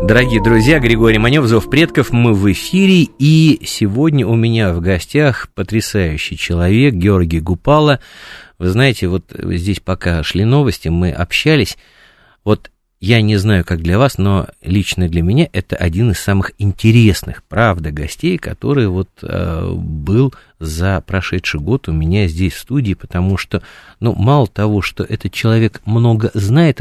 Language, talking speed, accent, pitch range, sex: Russian, 150 wpm, native, 95-140 Hz, male